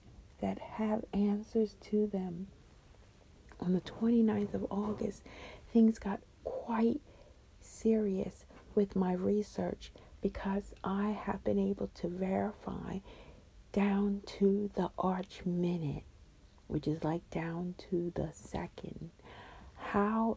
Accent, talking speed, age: American, 110 wpm, 50-69